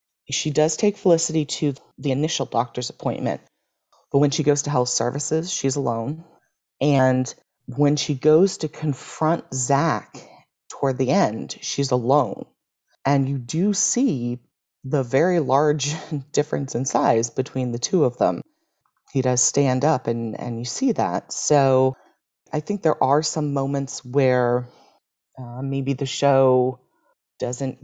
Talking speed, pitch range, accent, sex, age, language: 145 wpm, 125-150 Hz, American, female, 30-49, English